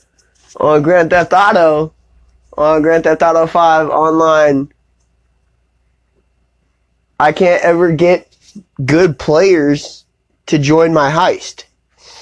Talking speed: 100 wpm